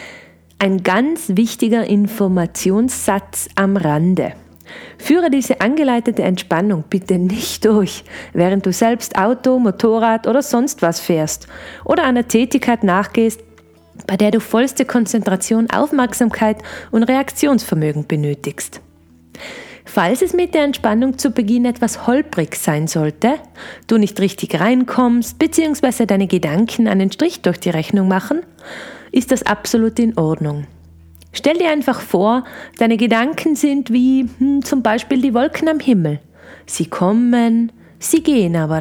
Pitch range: 175-255 Hz